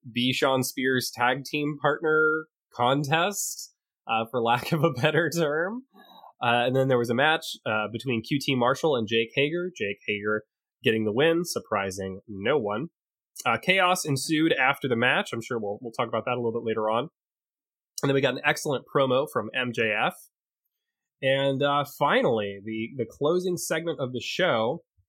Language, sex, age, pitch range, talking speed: English, male, 20-39, 115-155 Hz, 175 wpm